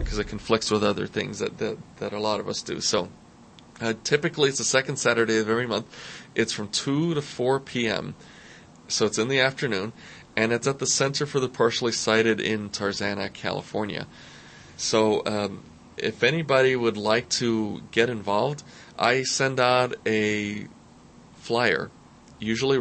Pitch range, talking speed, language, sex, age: 110-130 Hz, 165 wpm, English, male, 20-39